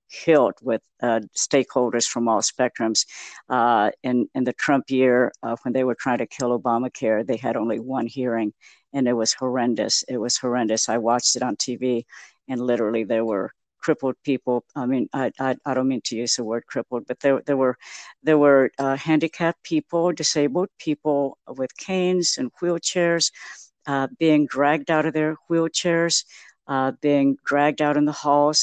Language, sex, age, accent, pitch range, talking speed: English, female, 60-79, American, 130-155 Hz, 180 wpm